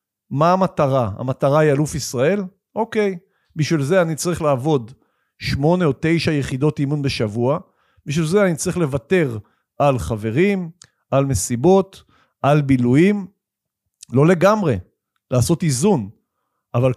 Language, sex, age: Hebrew, male, 50-69